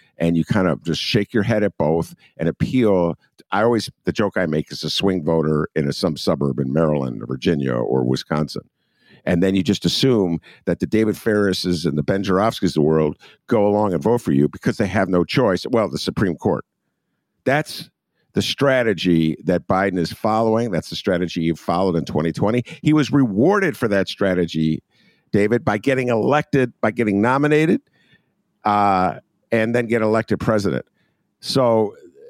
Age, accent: 50-69, American